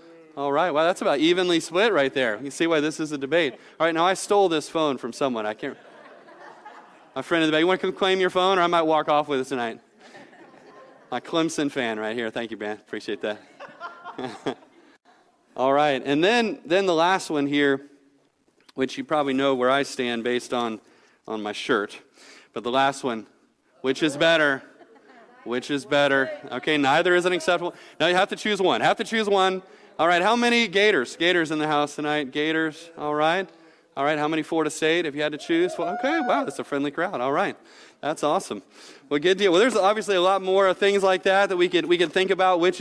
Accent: American